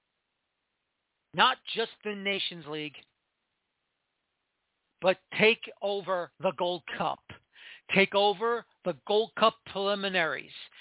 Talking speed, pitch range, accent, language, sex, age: 95 wpm, 200-245 Hz, American, English, male, 40-59